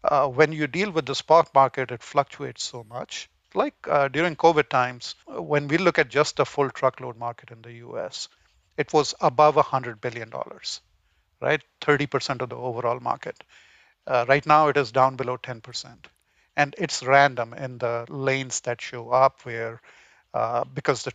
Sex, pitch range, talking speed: male, 125-150 Hz, 175 wpm